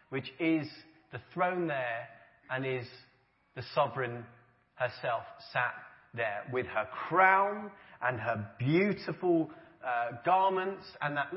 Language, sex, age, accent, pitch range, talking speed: English, male, 30-49, British, 130-185 Hz, 115 wpm